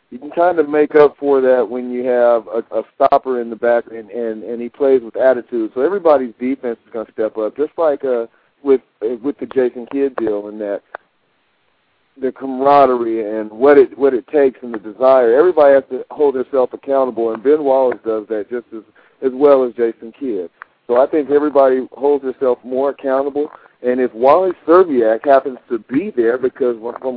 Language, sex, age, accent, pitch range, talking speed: English, male, 50-69, American, 125-170 Hz, 200 wpm